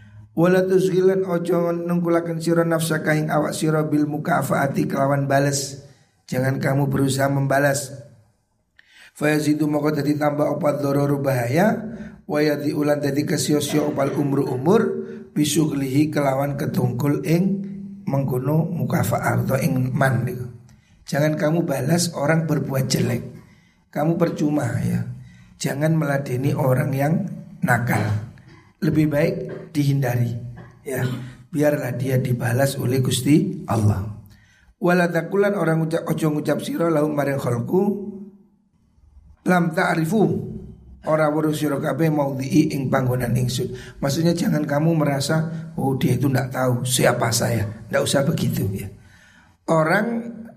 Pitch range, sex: 130-170 Hz, male